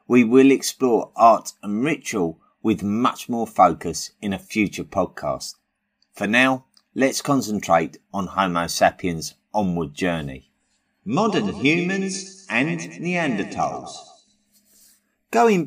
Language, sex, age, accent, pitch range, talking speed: English, male, 30-49, British, 95-135 Hz, 105 wpm